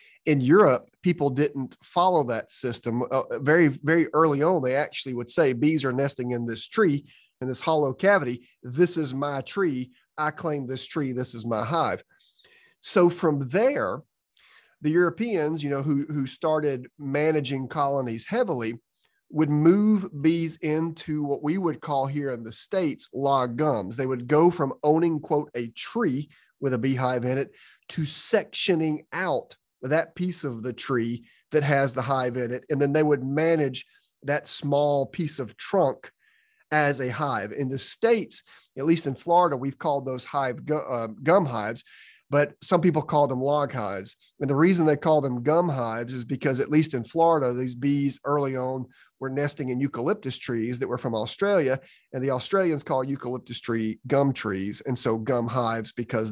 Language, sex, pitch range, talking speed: English, male, 125-155 Hz, 175 wpm